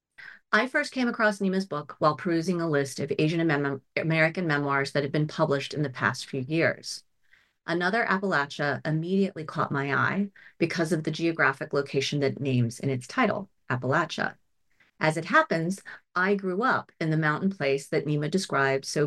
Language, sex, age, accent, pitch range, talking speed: English, female, 40-59, American, 145-190 Hz, 170 wpm